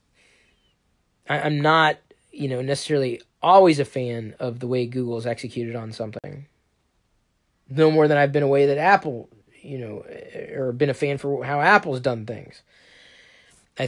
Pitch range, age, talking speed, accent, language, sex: 120-150 Hz, 20-39, 155 wpm, American, English, male